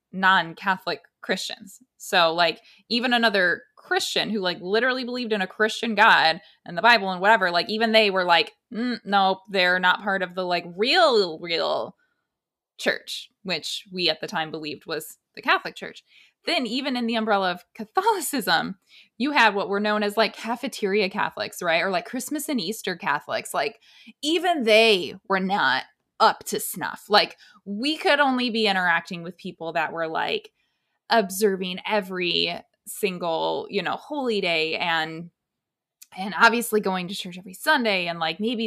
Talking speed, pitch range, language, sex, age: 165 wpm, 180-230 Hz, English, female, 20-39